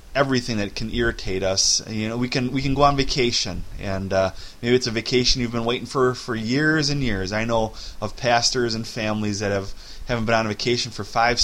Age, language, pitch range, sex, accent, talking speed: 20-39, English, 100-125 Hz, male, American, 225 wpm